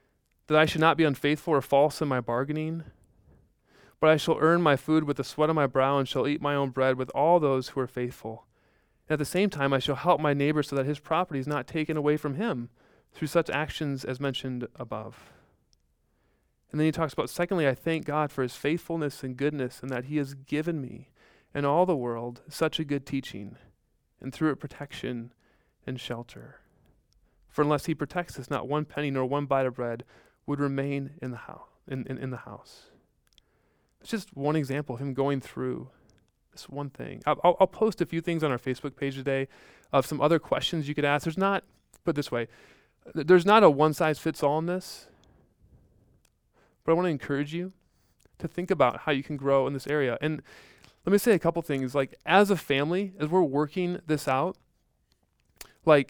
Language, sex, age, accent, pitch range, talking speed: English, male, 30-49, American, 130-160 Hz, 205 wpm